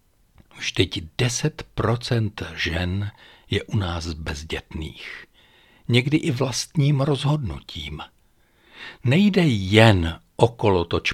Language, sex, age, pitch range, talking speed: Czech, male, 60-79, 90-135 Hz, 80 wpm